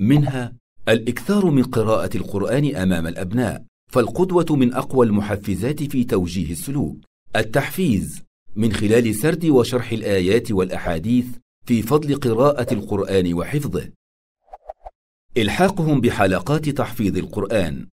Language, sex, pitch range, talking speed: Arabic, male, 105-140 Hz, 100 wpm